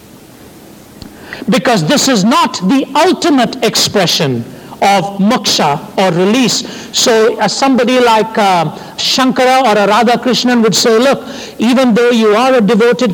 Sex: male